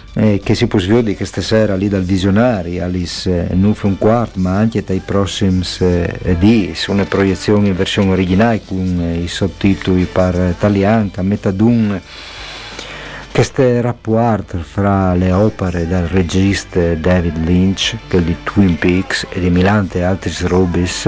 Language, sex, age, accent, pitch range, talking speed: Italian, male, 50-69, native, 90-110 Hz, 135 wpm